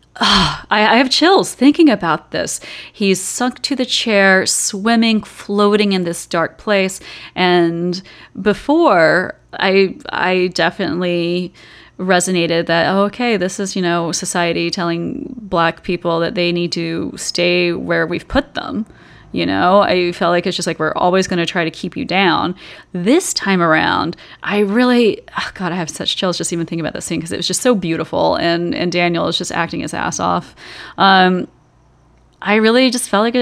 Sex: female